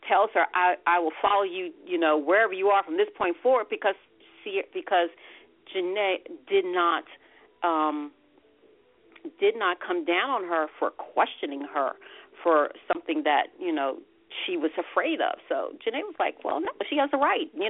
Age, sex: 40-59, female